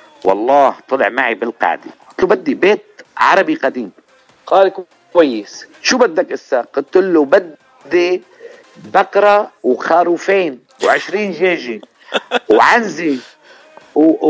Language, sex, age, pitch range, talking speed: Arabic, male, 50-69, 165-250 Hz, 100 wpm